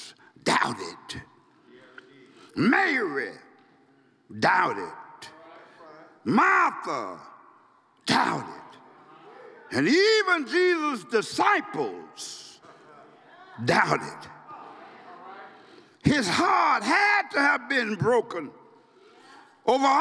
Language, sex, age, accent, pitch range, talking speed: English, male, 60-79, American, 210-350 Hz, 55 wpm